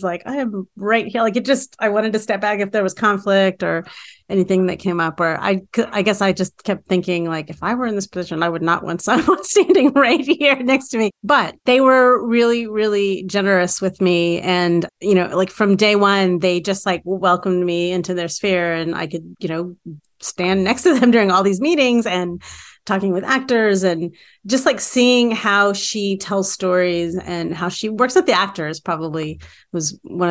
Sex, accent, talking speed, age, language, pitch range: female, American, 210 wpm, 30-49, English, 180-215 Hz